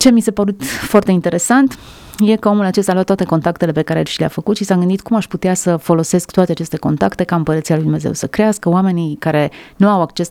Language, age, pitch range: Romanian, 30-49, 160-195 Hz